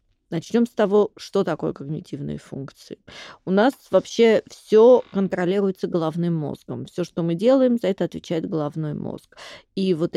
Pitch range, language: 165-205 Hz, Russian